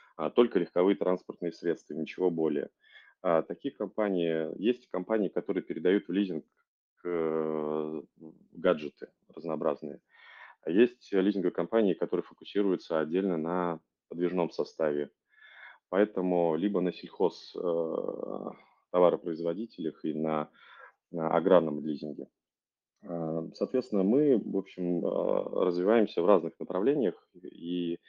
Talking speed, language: 95 wpm, Russian